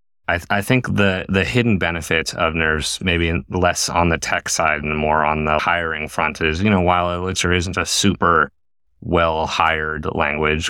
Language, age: English, 30-49